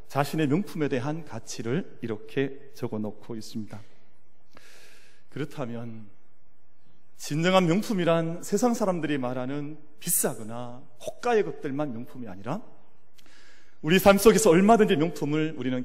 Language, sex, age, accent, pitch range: Korean, male, 40-59, native, 115-165 Hz